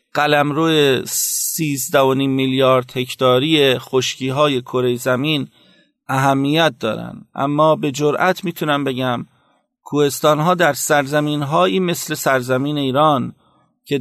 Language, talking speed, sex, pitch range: Persian, 95 wpm, male, 130-155 Hz